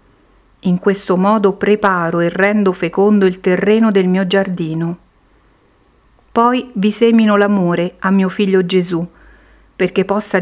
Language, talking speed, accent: Italian, 125 wpm, native